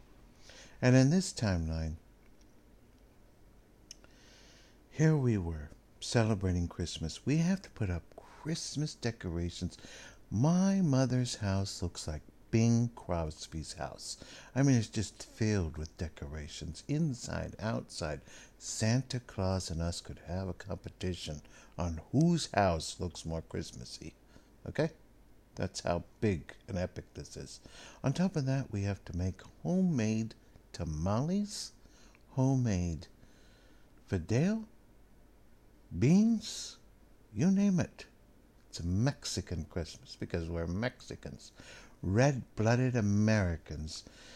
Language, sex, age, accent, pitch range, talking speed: English, male, 60-79, American, 85-125 Hz, 110 wpm